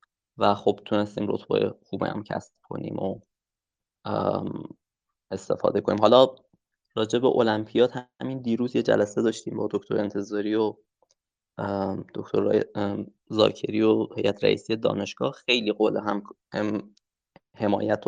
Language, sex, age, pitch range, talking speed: Persian, male, 20-39, 105-115 Hz, 115 wpm